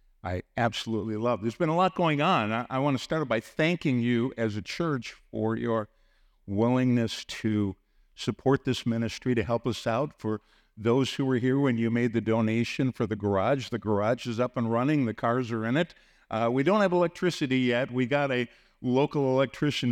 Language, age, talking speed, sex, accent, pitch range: English, 50-69, 200 wpm, male, American, 110-130 Hz